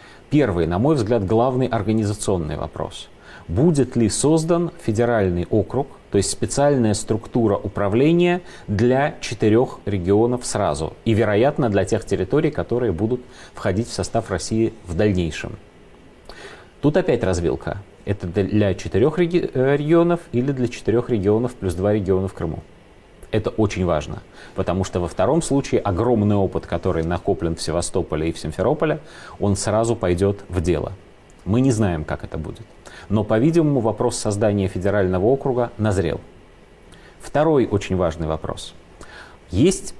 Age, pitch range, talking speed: 30-49, 95-125 Hz, 135 wpm